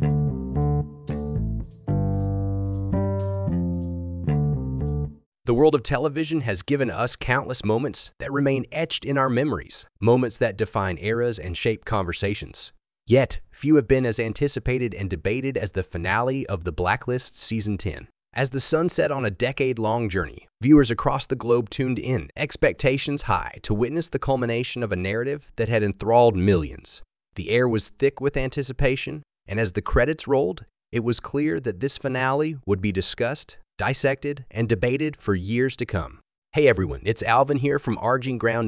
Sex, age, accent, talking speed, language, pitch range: male, 30-49, American, 155 wpm, English, 100-135 Hz